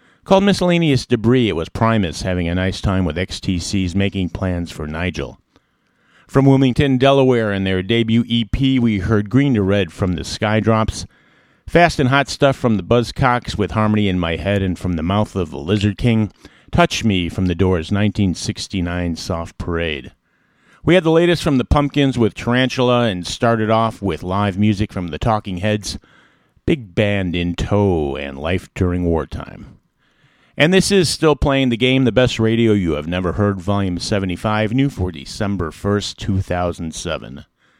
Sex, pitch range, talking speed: male, 95-125 Hz, 170 wpm